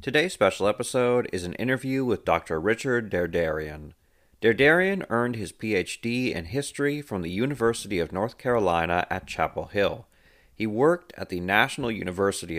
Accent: American